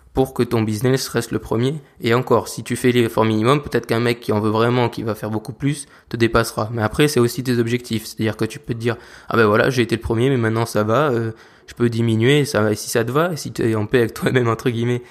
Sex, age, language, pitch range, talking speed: male, 20-39, French, 110-130 Hz, 290 wpm